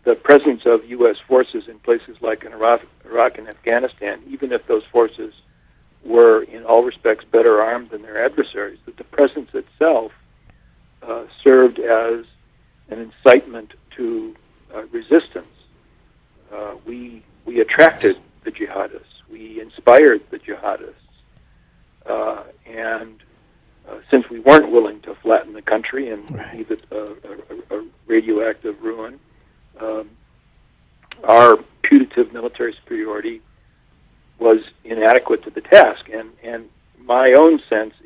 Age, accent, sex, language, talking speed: 60-79, American, male, English, 130 wpm